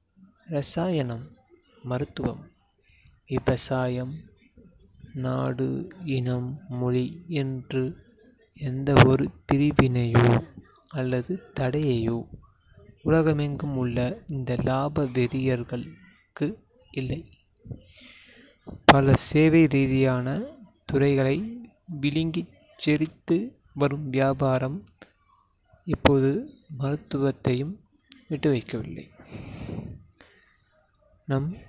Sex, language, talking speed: male, Tamil, 55 wpm